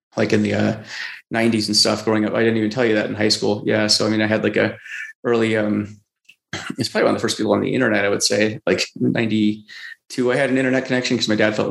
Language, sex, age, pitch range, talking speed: English, male, 30-49, 105-115 Hz, 265 wpm